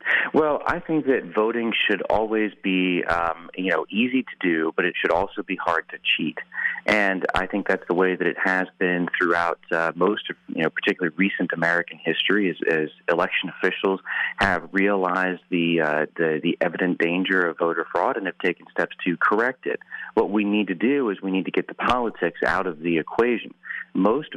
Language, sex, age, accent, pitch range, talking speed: English, male, 30-49, American, 85-100 Hz, 195 wpm